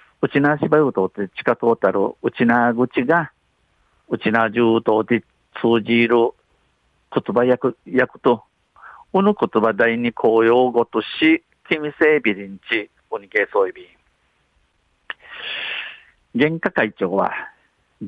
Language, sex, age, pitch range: Japanese, male, 50-69, 110-135 Hz